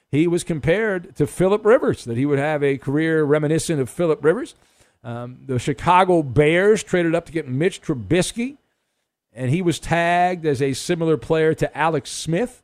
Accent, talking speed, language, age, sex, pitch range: American, 175 wpm, English, 50-69, male, 145-195 Hz